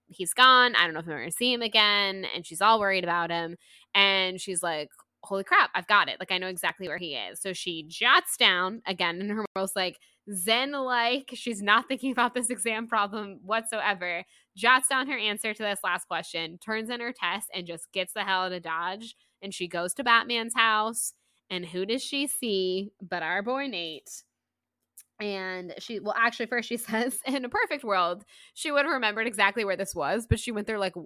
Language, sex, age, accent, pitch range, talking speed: English, female, 10-29, American, 185-240 Hz, 215 wpm